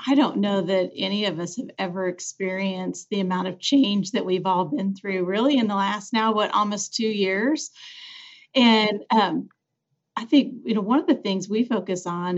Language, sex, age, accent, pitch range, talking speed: English, female, 40-59, American, 190-230 Hz, 200 wpm